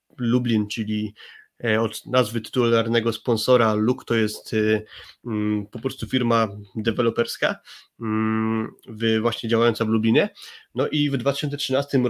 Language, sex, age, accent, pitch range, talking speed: Polish, male, 20-39, native, 115-135 Hz, 105 wpm